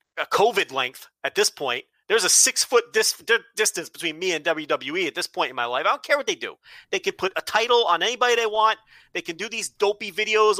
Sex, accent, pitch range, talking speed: male, American, 160-220 Hz, 240 wpm